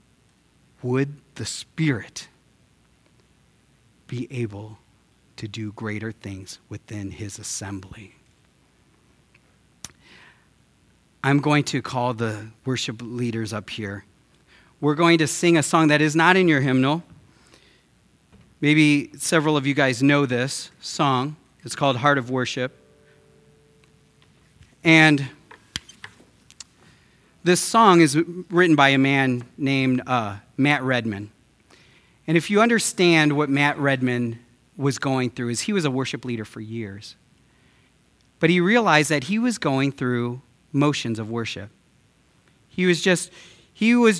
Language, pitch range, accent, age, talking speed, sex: English, 120-165 Hz, American, 40-59, 125 wpm, male